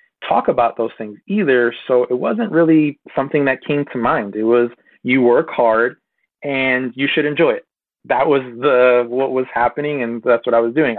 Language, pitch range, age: English, 110-130 Hz, 30-49